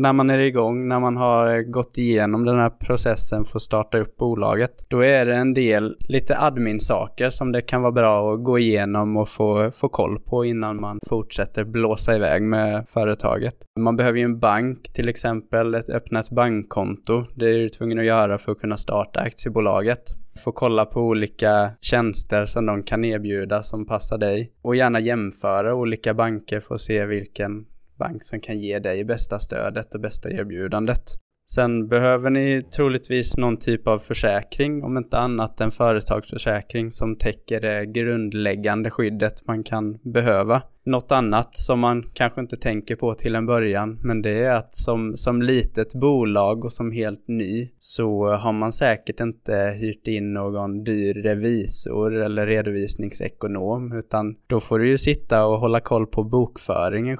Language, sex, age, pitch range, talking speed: Swedish, male, 20-39, 105-120 Hz, 170 wpm